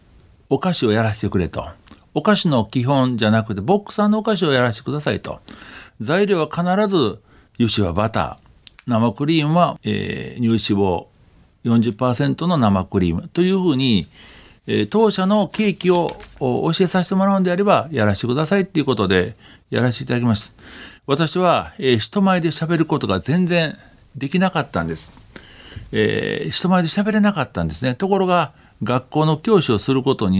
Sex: male